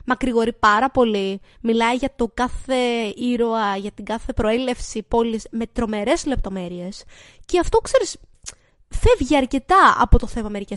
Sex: female